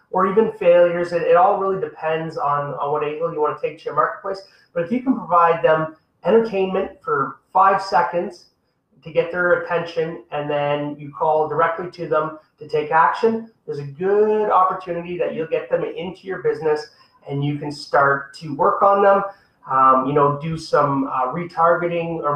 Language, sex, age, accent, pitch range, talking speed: English, male, 30-49, American, 155-195 Hz, 190 wpm